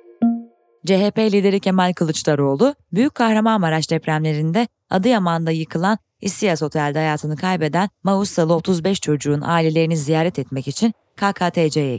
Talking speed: 105 wpm